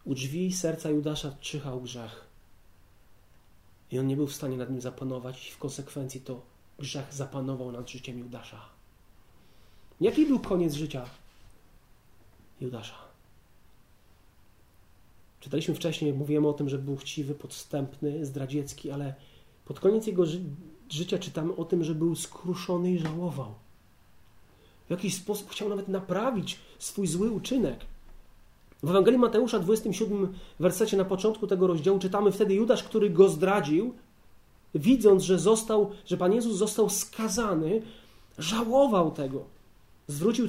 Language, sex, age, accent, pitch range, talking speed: Polish, male, 30-49, native, 130-195 Hz, 130 wpm